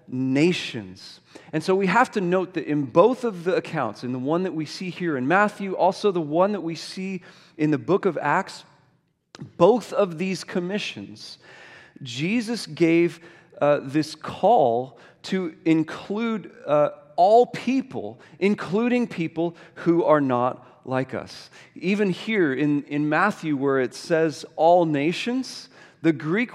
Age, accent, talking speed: 40-59, American, 150 wpm